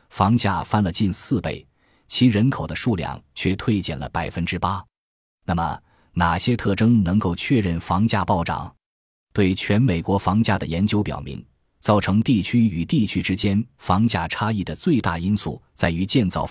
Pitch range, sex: 85-115 Hz, male